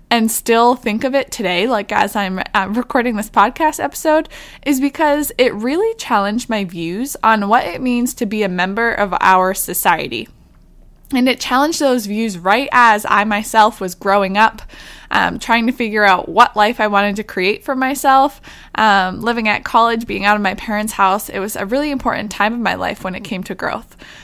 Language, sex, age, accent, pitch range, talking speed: English, female, 20-39, American, 205-265 Hz, 200 wpm